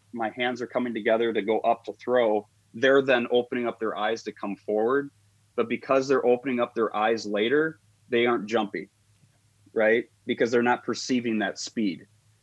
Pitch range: 105-125 Hz